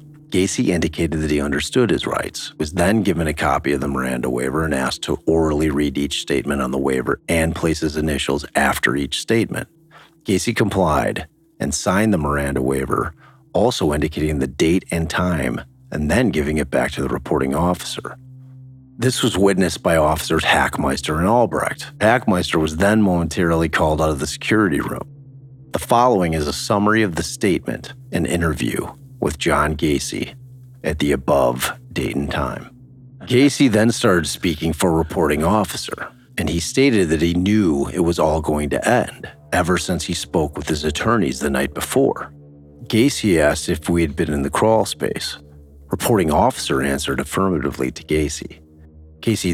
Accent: American